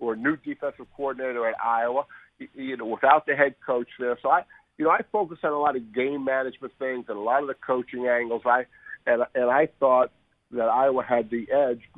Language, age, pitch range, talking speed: English, 50-69, 120-145 Hz, 225 wpm